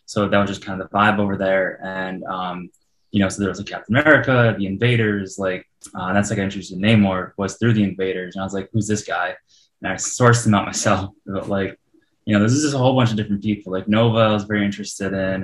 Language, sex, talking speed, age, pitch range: English, male, 260 wpm, 20-39, 95-115 Hz